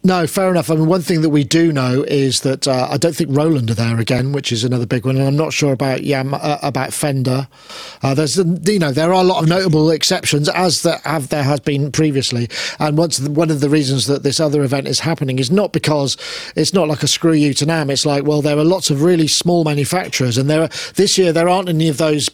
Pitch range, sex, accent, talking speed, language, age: 135-165 Hz, male, British, 260 wpm, English, 40-59